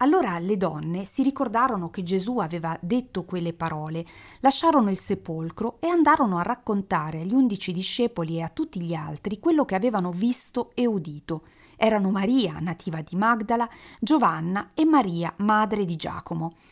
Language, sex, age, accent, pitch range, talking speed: Italian, female, 40-59, native, 175-230 Hz, 155 wpm